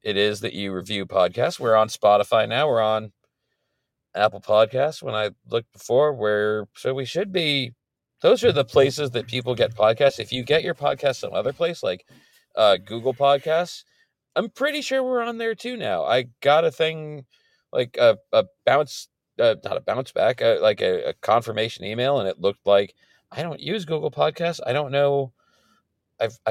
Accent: American